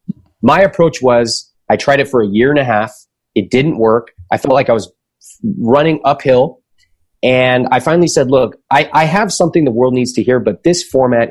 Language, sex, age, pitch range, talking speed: English, male, 30-49, 110-145 Hz, 205 wpm